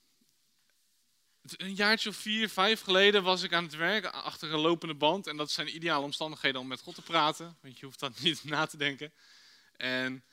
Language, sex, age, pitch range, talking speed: Dutch, male, 20-39, 145-205 Hz, 200 wpm